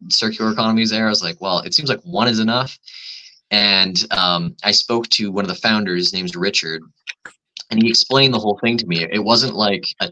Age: 20-39